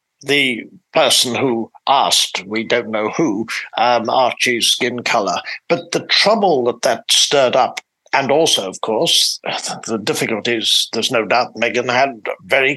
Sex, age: male, 60-79